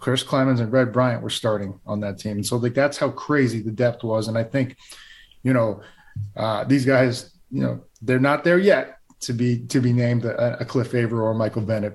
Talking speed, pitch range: 230 wpm, 115-135 Hz